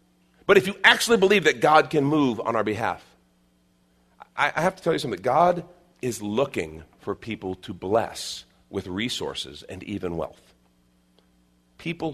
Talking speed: 160 wpm